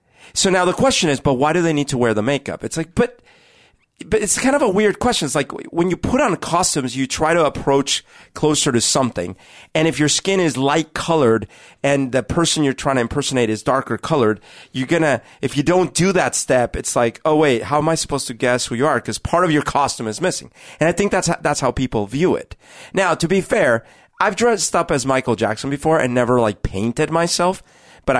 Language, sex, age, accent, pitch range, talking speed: English, male, 40-59, American, 115-170 Hz, 235 wpm